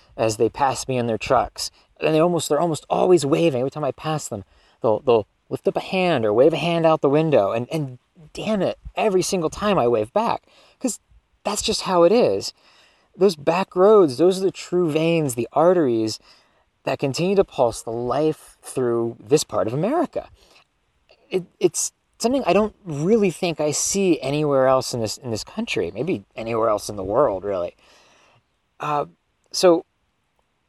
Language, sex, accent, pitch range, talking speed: English, male, American, 115-175 Hz, 180 wpm